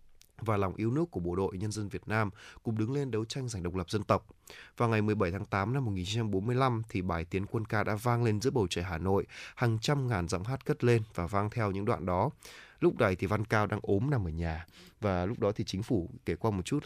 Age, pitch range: 20-39, 90-115 Hz